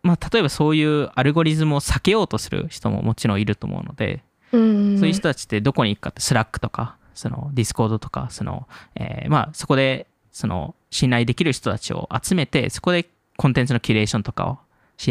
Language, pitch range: Japanese, 115-180 Hz